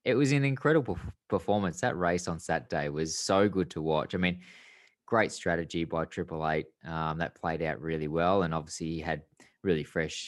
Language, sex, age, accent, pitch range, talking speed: English, male, 20-39, Australian, 80-90 Hz, 195 wpm